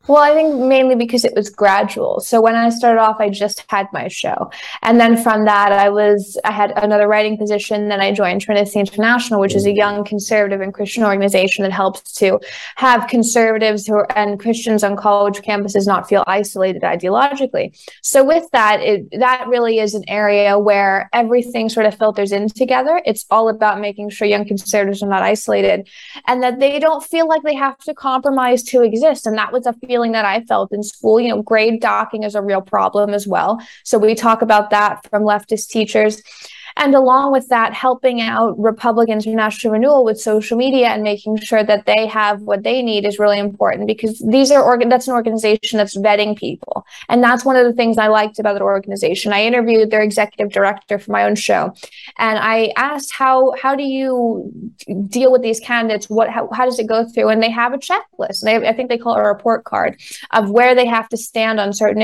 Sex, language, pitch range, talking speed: female, English, 205-240 Hz, 215 wpm